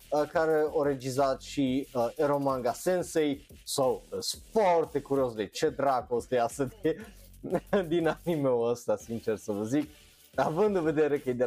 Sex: male